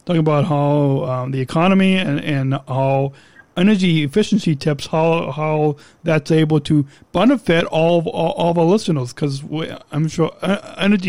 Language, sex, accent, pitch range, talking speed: English, male, American, 145-175 Hz, 145 wpm